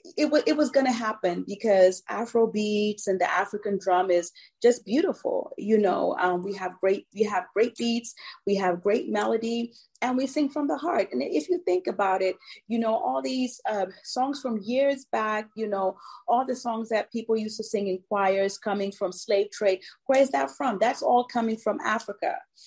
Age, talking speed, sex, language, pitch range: 30-49, 205 wpm, female, English, 190-235 Hz